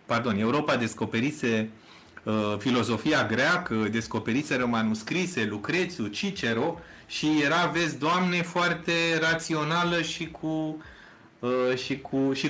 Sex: male